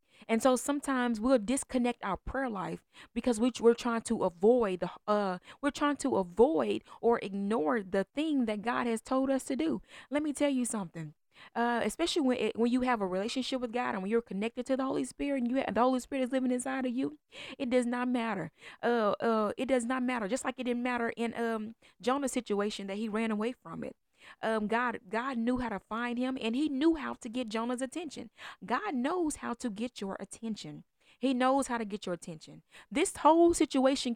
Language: English